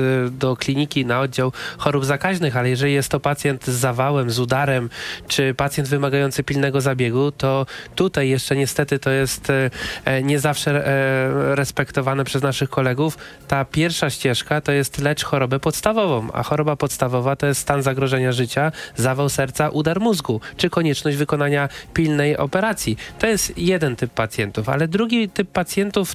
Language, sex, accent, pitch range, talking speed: Polish, male, native, 135-160 Hz, 150 wpm